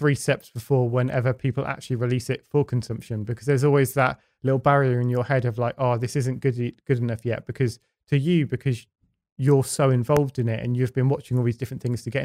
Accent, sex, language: British, male, English